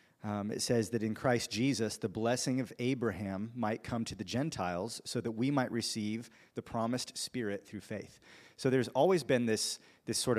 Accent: American